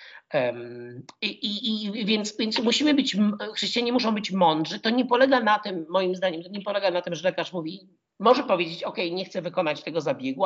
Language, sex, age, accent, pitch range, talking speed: Polish, male, 50-69, native, 165-235 Hz, 195 wpm